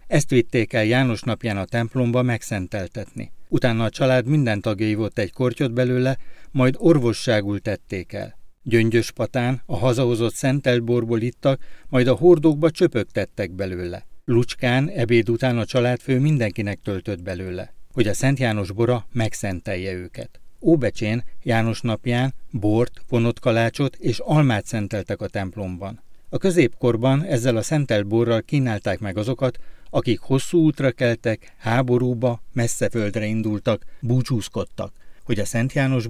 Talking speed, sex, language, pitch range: 130 wpm, male, Hungarian, 105-130 Hz